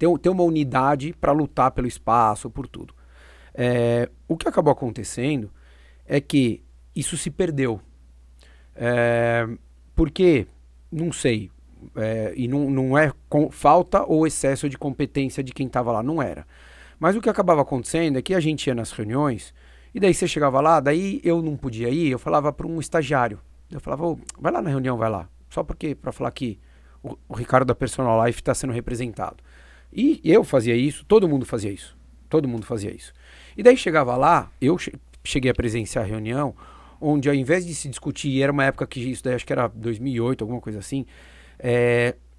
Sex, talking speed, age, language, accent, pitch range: male, 185 wpm, 40-59, Portuguese, Brazilian, 110-150 Hz